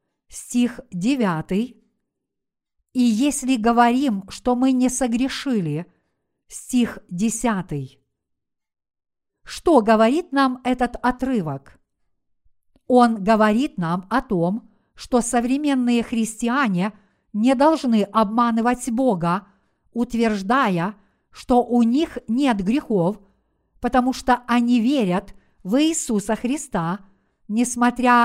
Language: Russian